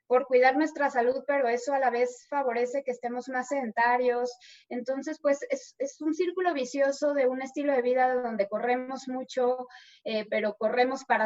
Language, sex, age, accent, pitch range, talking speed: Spanish, female, 20-39, Mexican, 225-265 Hz, 175 wpm